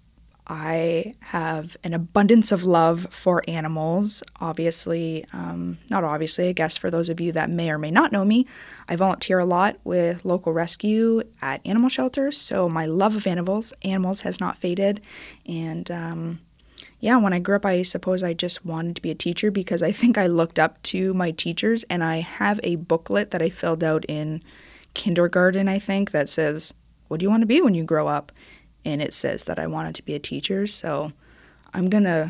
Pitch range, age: 160-200 Hz, 20-39